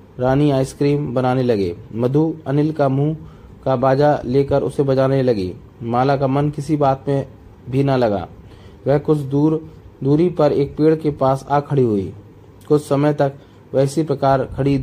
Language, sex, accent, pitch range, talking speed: Hindi, male, native, 115-145 Hz, 170 wpm